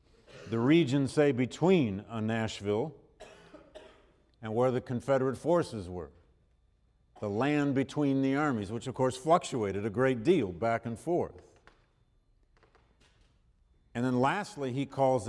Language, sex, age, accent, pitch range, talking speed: English, male, 50-69, American, 105-135 Hz, 125 wpm